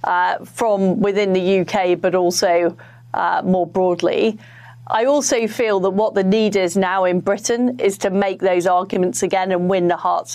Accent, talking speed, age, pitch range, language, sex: British, 180 wpm, 40-59, 180-215 Hz, English, female